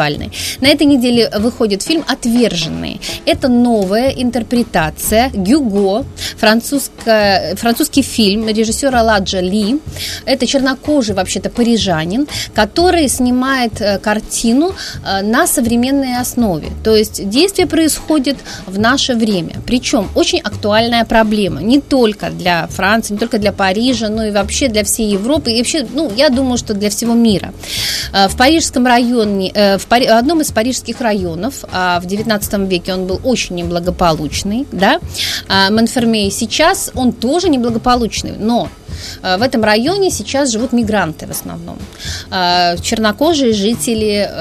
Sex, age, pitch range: female, 30-49, 200-260 Hz